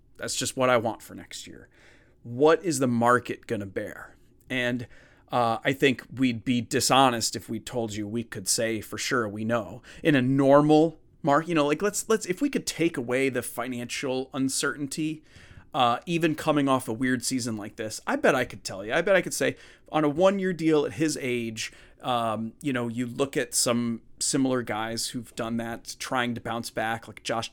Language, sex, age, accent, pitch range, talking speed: English, male, 30-49, American, 115-140 Hz, 210 wpm